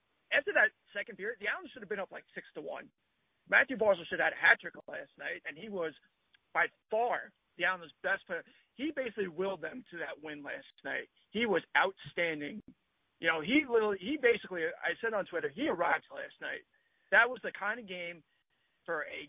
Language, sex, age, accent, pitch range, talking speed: English, male, 40-59, American, 160-220 Hz, 205 wpm